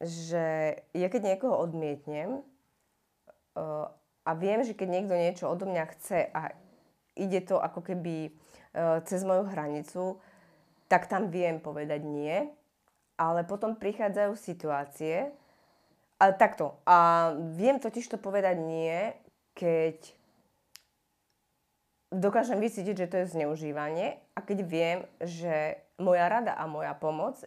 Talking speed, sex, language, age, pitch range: 125 wpm, female, Slovak, 30-49, 160-195 Hz